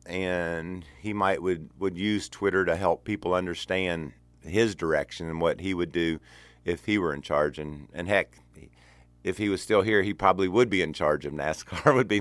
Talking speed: 200 wpm